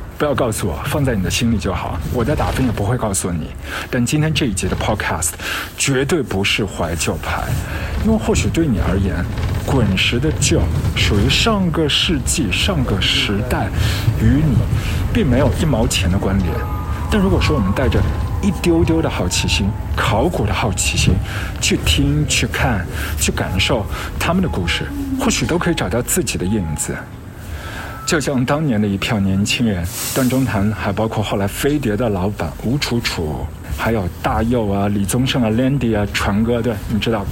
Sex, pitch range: male, 90-115 Hz